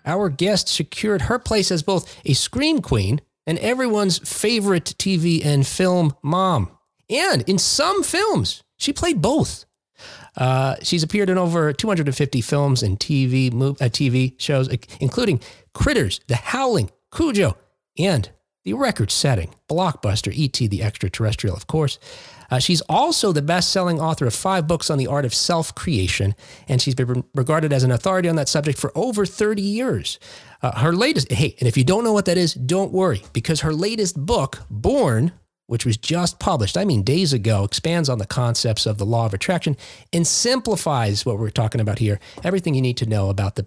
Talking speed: 180 wpm